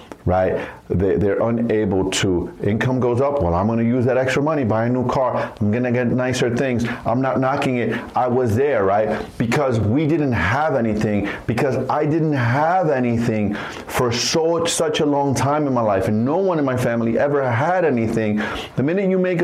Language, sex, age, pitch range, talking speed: English, male, 30-49, 115-160 Hz, 205 wpm